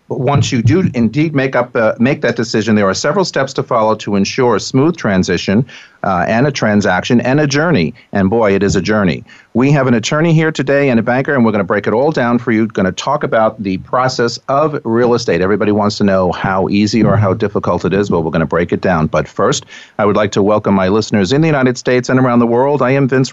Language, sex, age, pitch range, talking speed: English, male, 50-69, 105-135 Hz, 255 wpm